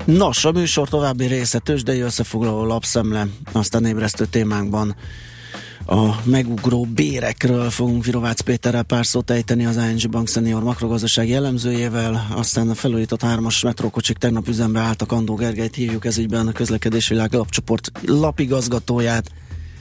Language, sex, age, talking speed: Hungarian, male, 20-39, 125 wpm